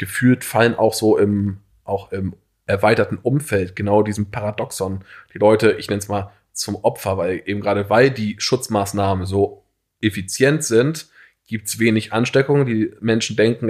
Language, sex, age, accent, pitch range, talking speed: German, male, 20-39, German, 95-110 Hz, 160 wpm